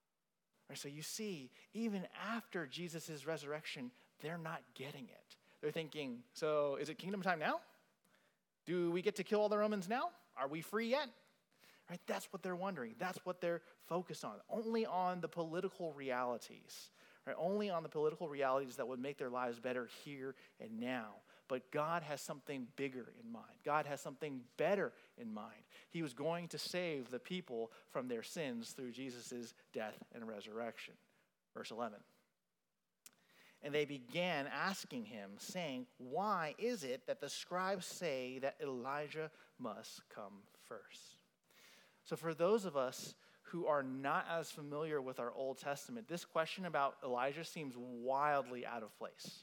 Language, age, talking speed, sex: English, 30-49, 160 wpm, male